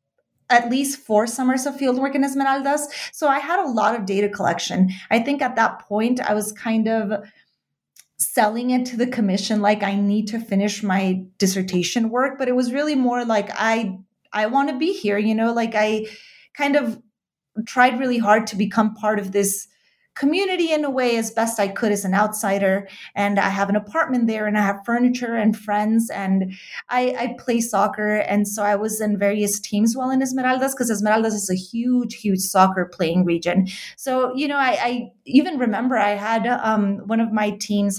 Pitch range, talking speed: 195-245 Hz, 200 wpm